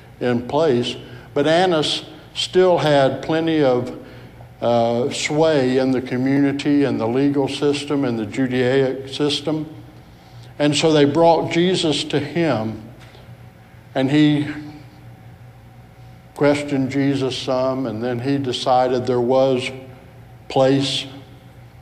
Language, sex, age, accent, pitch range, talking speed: English, male, 60-79, American, 125-140 Hz, 110 wpm